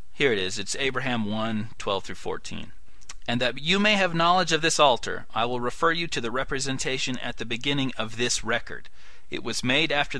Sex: male